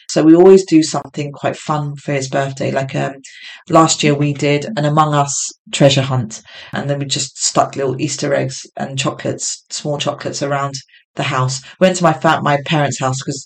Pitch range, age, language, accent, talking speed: 140-165 Hz, 30-49, English, British, 195 wpm